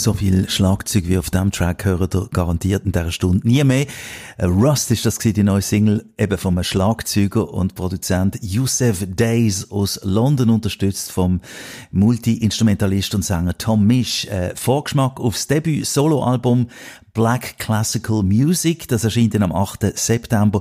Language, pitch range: German, 100-120 Hz